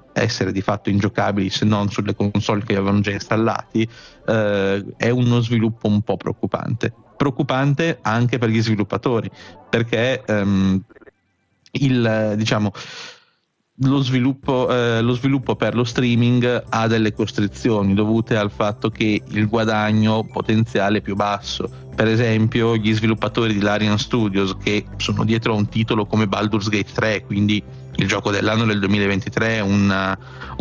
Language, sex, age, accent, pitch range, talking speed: Italian, male, 30-49, native, 105-115 Hz, 140 wpm